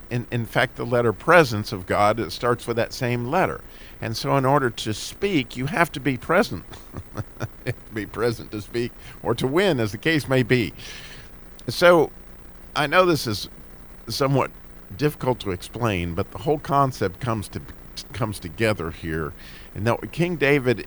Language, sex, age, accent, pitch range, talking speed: English, male, 50-69, American, 95-145 Hz, 170 wpm